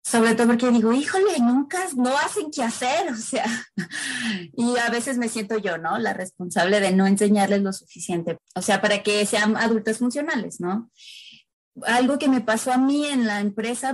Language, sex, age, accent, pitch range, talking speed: Spanish, female, 20-39, Mexican, 215-260 Hz, 185 wpm